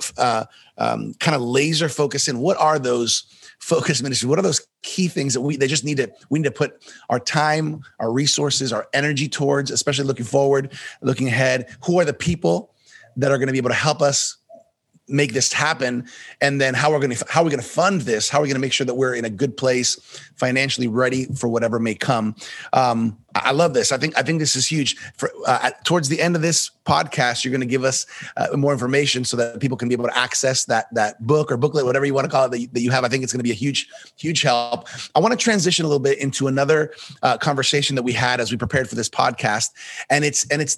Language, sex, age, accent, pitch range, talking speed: English, male, 30-49, American, 125-150 Hz, 250 wpm